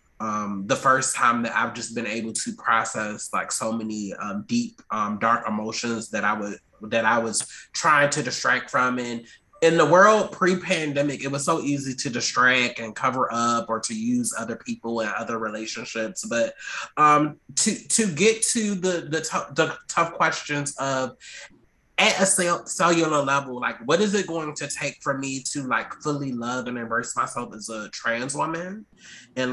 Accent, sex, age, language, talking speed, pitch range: American, male, 20-39, English, 185 wpm, 120-165 Hz